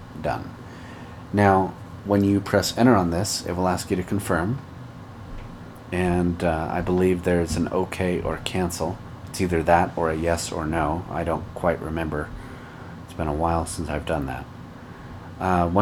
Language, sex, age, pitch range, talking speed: English, male, 30-49, 85-105 Hz, 165 wpm